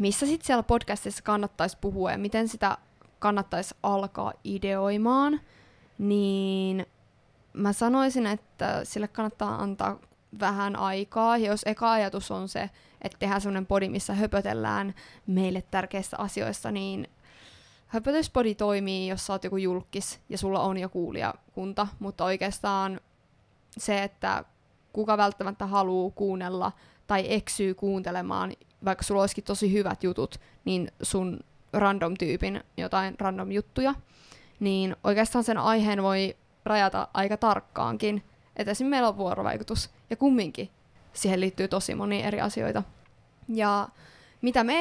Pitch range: 190-215 Hz